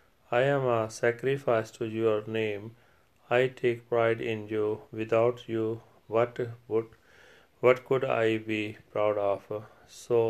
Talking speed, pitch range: 135 wpm, 110-120 Hz